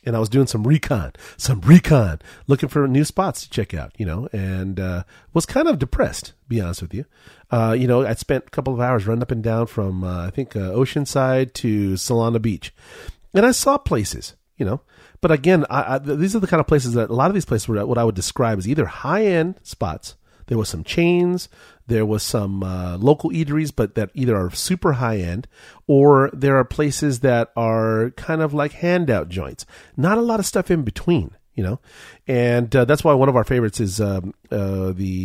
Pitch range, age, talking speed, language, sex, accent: 105-150 Hz, 40-59, 215 wpm, English, male, American